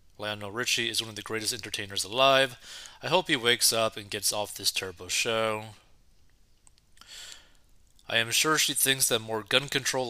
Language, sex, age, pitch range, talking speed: English, male, 30-49, 100-120 Hz, 170 wpm